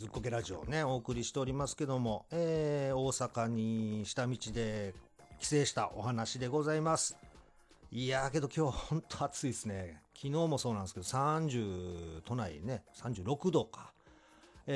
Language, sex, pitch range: Japanese, male, 110-140 Hz